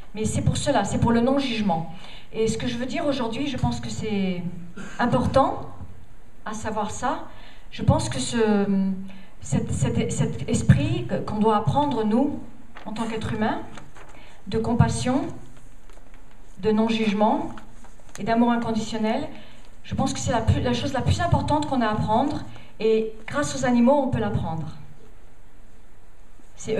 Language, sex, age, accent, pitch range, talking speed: French, female, 40-59, French, 205-255 Hz, 155 wpm